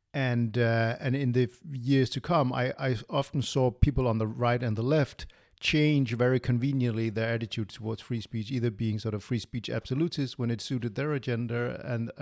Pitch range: 110-130 Hz